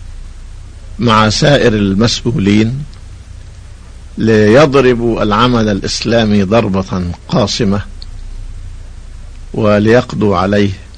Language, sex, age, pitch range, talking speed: Arabic, male, 50-69, 90-110 Hz, 55 wpm